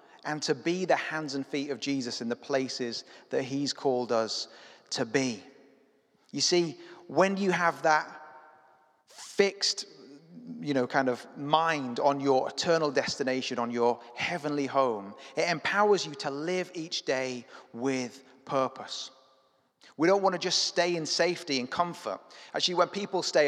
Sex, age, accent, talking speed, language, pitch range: male, 30-49, British, 155 wpm, English, 120-155 Hz